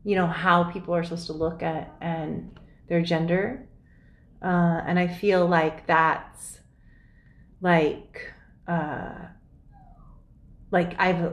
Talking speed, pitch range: 115 wpm, 175-235 Hz